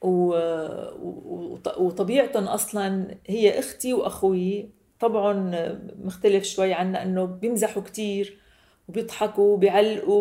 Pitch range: 180-220 Hz